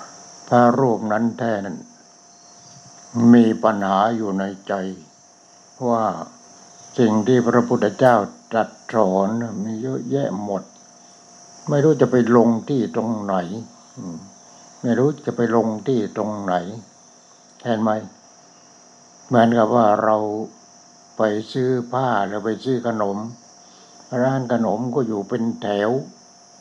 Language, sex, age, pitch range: English, male, 60-79, 100-120 Hz